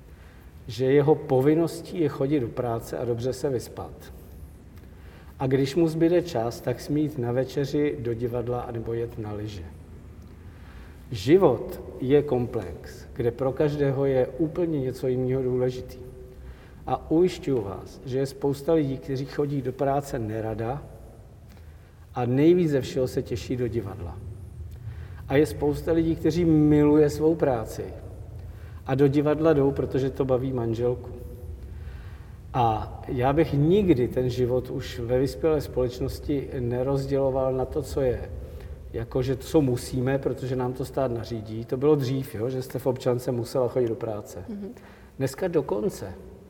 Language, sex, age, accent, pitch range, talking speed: Czech, male, 50-69, native, 100-140 Hz, 140 wpm